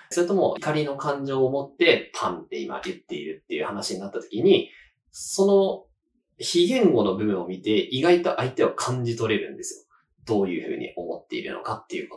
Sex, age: male, 20-39